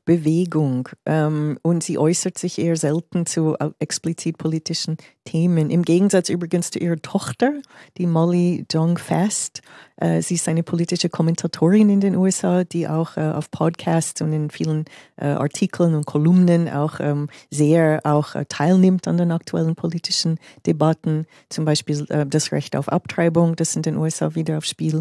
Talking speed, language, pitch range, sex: 160 wpm, German, 155-180 Hz, female